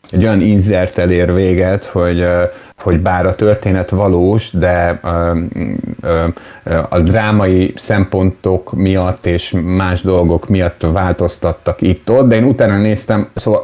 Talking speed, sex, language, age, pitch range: 130 wpm, male, Hungarian, 30-49, 90-105 Hz